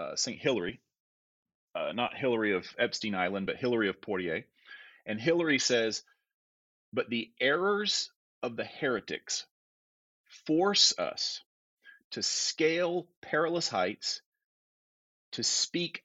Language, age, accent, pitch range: English, 30-49, American, 100-140 Hz